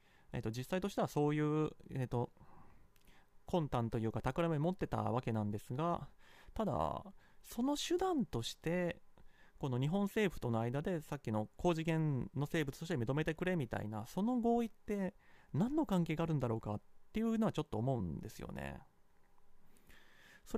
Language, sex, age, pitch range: Japanese, male, 30-49, 120-180 Hz